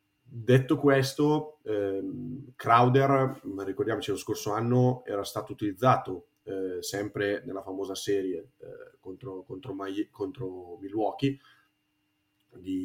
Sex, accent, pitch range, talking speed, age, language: male, native, 100-130 Hz, 105 wpm, 30-49, Italian